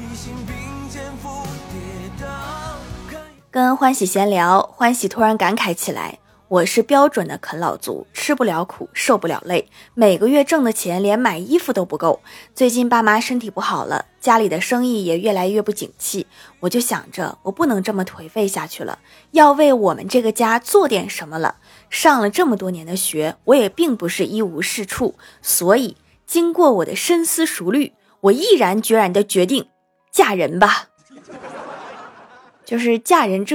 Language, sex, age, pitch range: Chinese, female, 20-39, 180-255 Hz